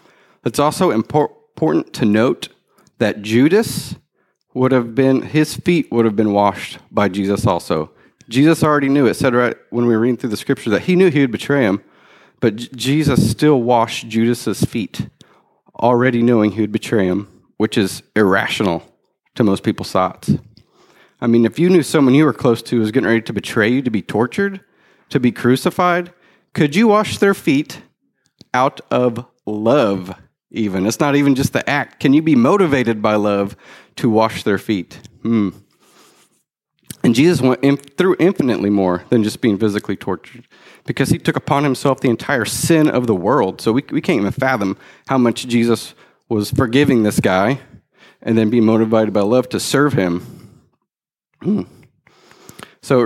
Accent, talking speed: American, 175 wpm